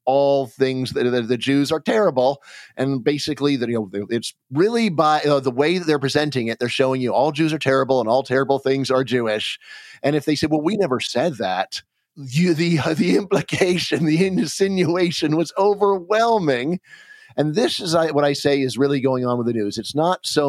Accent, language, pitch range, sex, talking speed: American, English, 130-155 Hz, male, 200 wpm